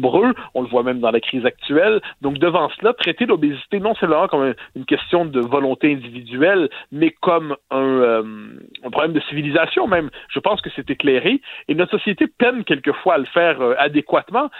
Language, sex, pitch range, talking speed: French, male, 135-175 Hz, 180 wpm